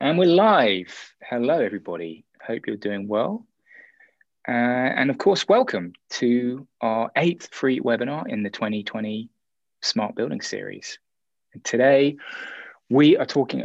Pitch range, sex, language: 100-130 Hz, male, English